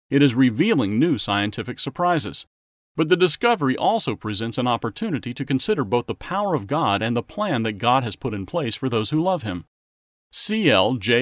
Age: 40-59